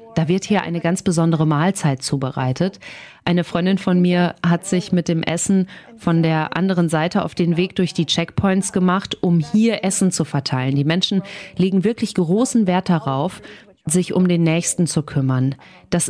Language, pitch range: German, 160-200 Hz